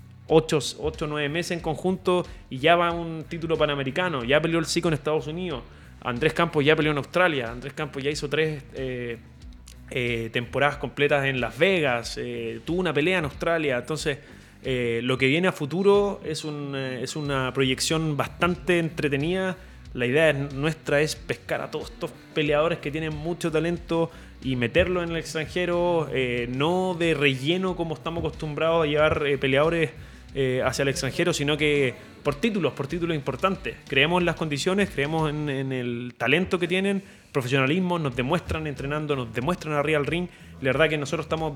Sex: male